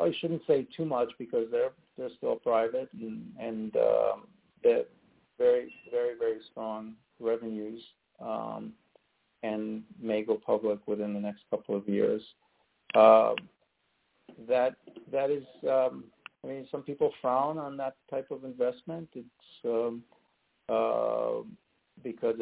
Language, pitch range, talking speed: English, 110-160 Hz, 130 wpm